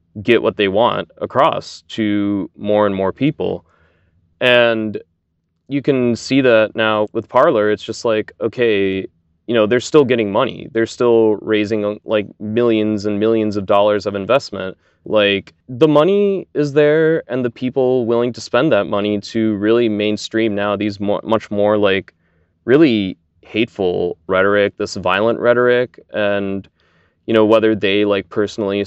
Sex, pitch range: male, 100-110 Hz